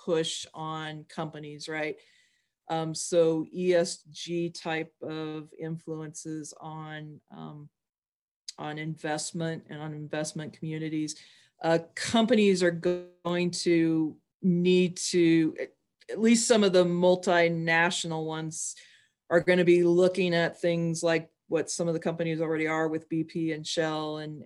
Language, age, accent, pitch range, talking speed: English, 40-59, American, 160-180 Hz, 130 wpm